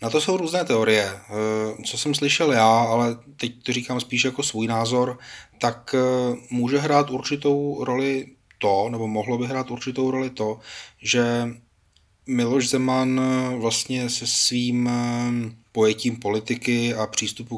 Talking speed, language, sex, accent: 135 wpm, Czech, male, native